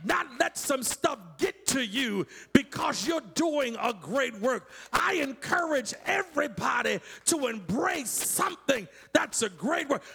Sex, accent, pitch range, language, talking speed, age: male, American, 235-375 Hz, English, 135 wpm, 40-59